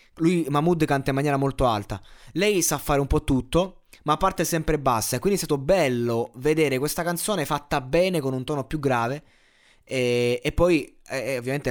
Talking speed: 180 wpm